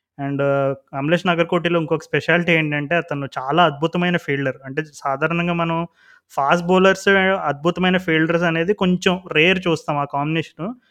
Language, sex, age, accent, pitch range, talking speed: Telugu, male, 20-39, native, 145-165 Hz, 125 wpm